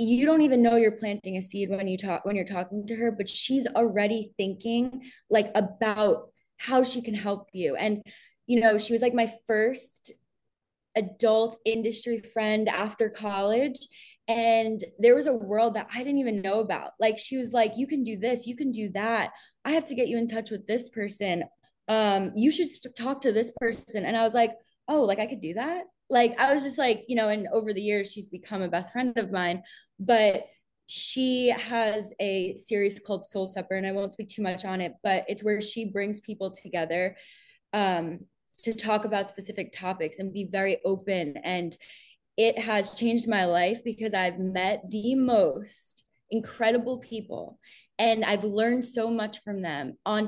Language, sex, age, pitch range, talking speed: English, female, 20-39, 200-235 Hz, 195 wpm